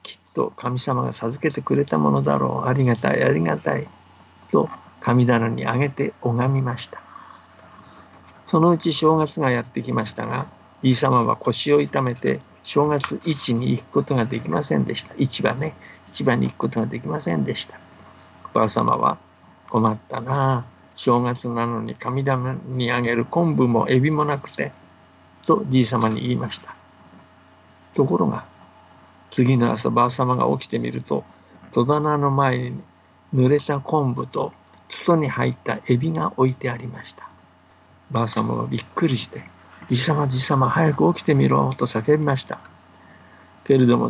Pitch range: 95-135 Hz